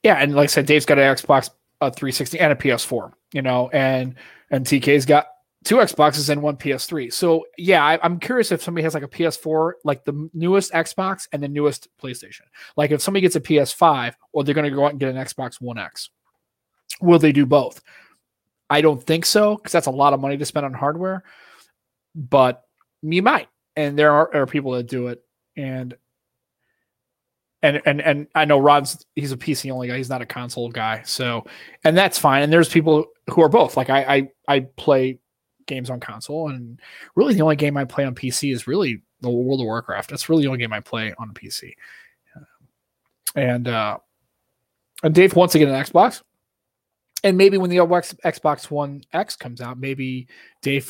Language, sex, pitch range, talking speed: English, male, 130-155 Hz, 200 wpm